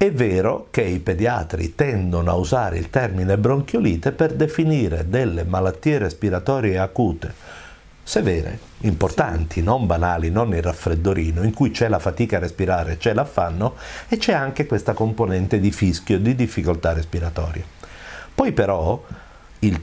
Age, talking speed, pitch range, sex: 50-69, 140 wpm, 85-120 Hz, male